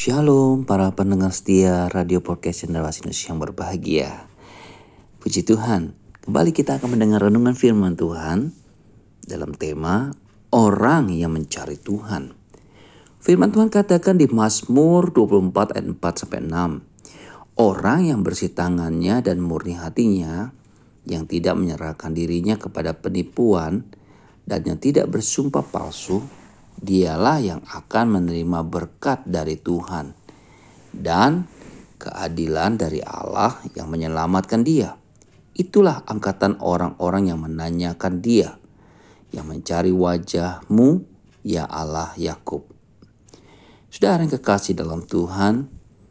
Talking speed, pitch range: 105 wpm, 85-105 Hz